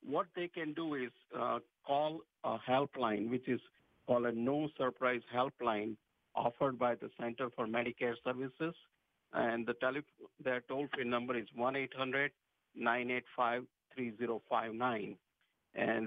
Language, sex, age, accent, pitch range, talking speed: English, male, 50-69, Indian, 120-140 Hz, 155 wpm